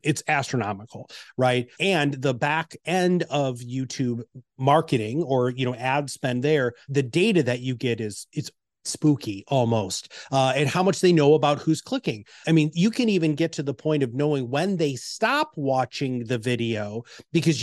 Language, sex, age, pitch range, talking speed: English, male, 30-49, 130-175 Hz, 175 wpm